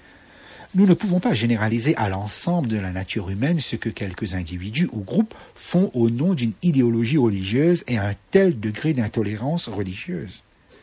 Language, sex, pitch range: French, male, 105-170 Hz